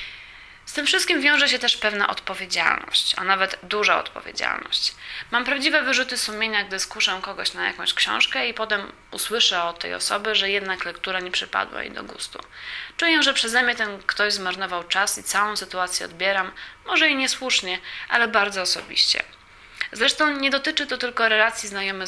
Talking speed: 165 wpm